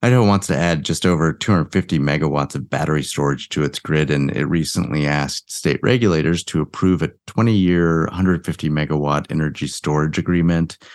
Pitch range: 75-90 Hz